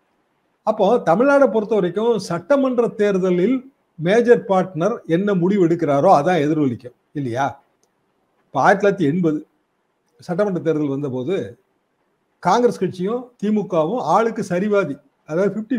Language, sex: Tamil, male